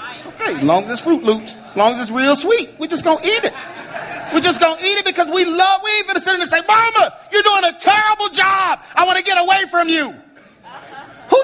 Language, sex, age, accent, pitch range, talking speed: English, male, 40-59, American, 280-380 Hz, 250 wpm